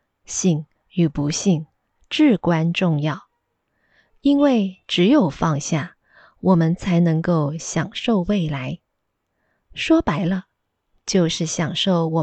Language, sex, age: Chinese, female, 20-39